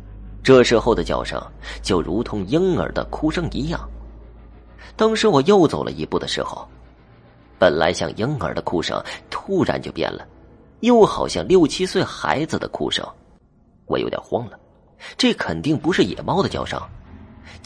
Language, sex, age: Chinese, male, 30-49